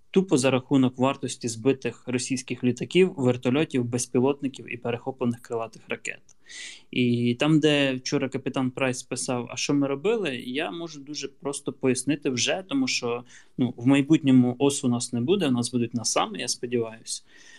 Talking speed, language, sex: 160 wpm, Ukrainian, male